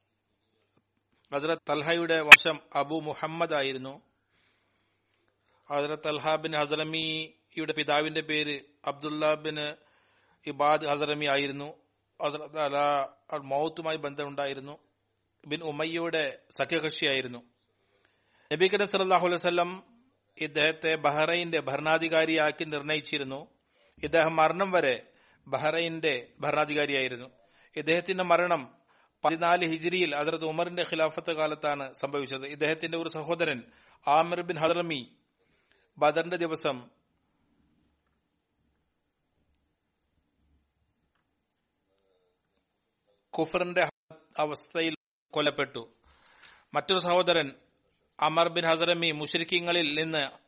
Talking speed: 75 wpm